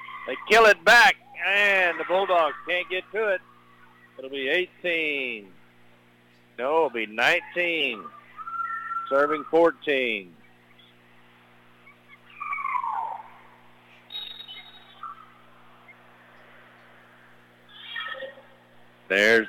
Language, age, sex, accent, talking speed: English, 50-69, male, American, 65 wpm